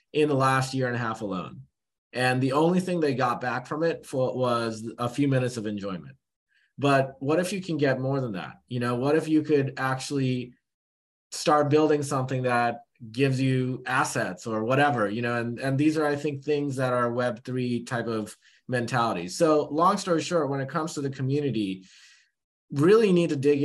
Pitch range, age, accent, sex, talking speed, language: 120-150 Hz, 30-49, American, male, 200 wpm, English